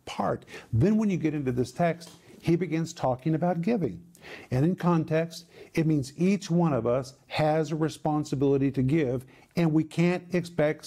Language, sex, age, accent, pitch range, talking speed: English, male, 50-69, American, 145-175 Hz, 170 wpm